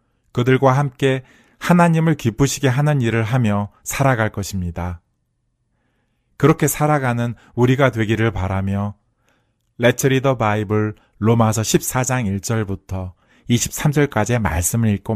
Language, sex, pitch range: Korean, male, 100-125 Hz